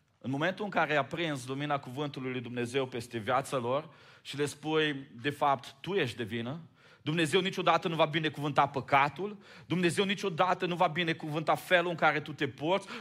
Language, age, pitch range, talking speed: Romanian, 30-49, 130-160 Hz, 190 wpm